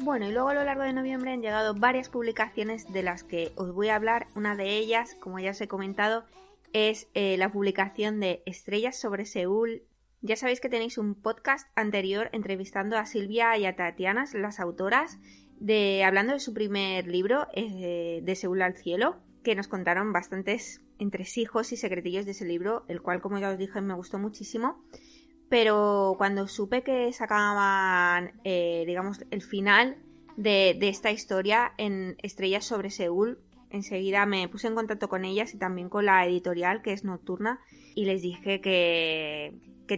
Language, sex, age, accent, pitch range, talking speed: Spanish, female, 20-39, Spanish, 190-225 Hz, 175 wpm